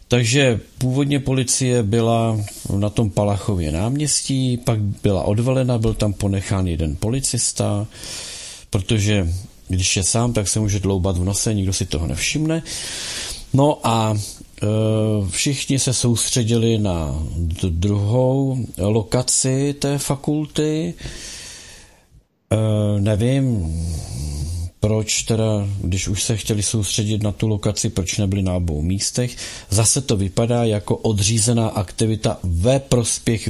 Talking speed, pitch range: 120 wpm, 100-130 Hz